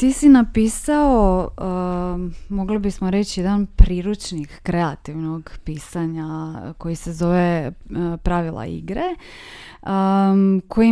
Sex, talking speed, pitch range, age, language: female, 100 wpm, 165-200 Hz, 20-39, Croatian